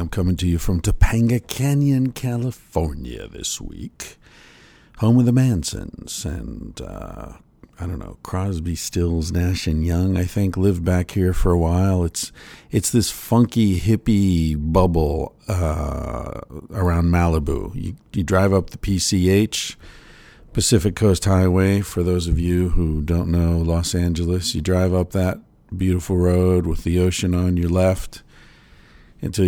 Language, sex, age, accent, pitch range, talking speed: English, male, 50-69, American, 85-95 Hz, 145 wpm